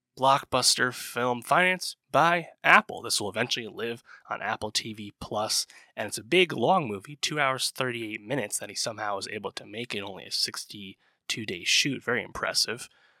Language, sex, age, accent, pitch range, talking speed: English, male, 20-39, American, 105-130 Hz, 175 wpm